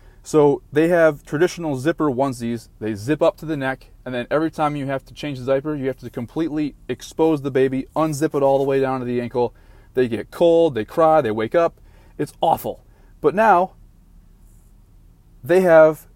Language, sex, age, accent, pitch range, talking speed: English, male, 20-39, American, 105-135 Hz, 195 wpm